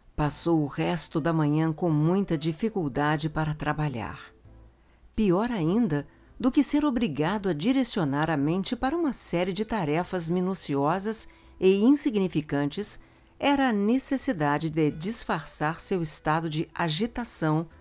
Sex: female